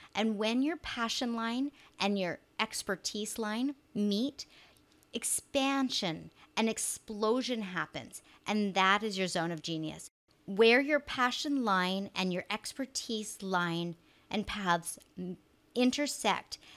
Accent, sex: American, female